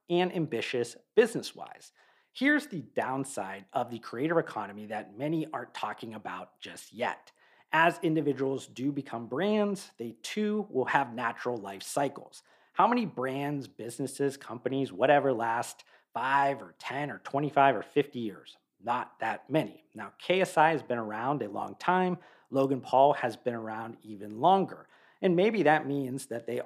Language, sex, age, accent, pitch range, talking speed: English, male, 40-59, American, 120-170 Hz, 155 wpm